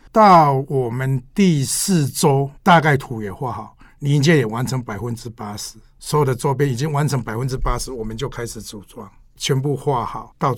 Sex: male